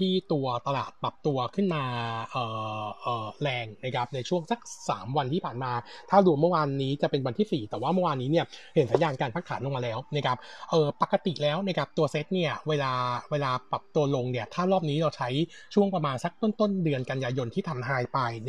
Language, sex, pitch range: Thai, male, 130-175 Hz